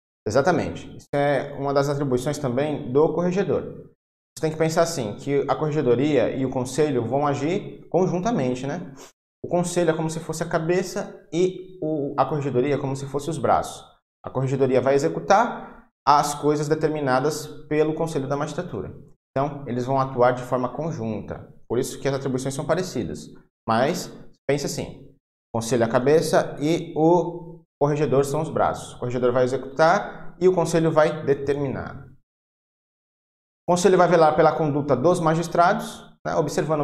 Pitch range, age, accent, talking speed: 130-160 Hz, 20-39, Brazilian, 160 wpm